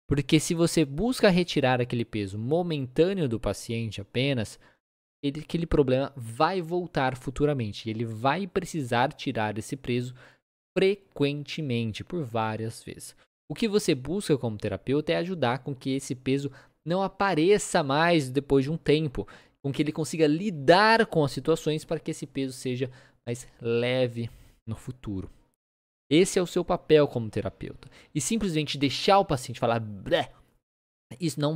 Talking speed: 150 wpm